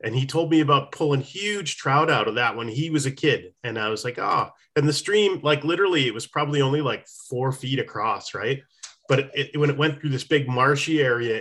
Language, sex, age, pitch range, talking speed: English, male, 30-49, 130-165 Hz, 245 wpm